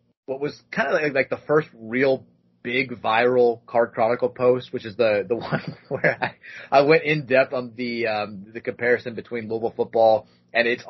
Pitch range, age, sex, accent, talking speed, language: 95-125 Hz, 30-49, male, American, 185 wpm, English